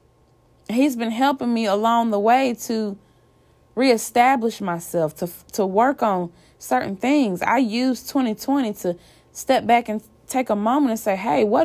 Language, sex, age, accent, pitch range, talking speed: English, female, 20-39, American, 190-250 Hz, 155 wpm